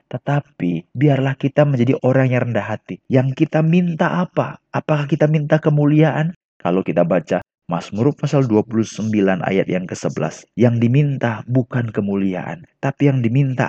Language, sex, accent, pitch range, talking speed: Indonesian, male, native, 110-140 Hz, 140 wpm